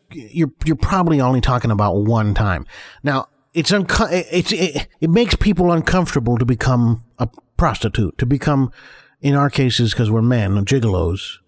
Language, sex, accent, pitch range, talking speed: English, male, American, 105-140 Hz, 165 wpm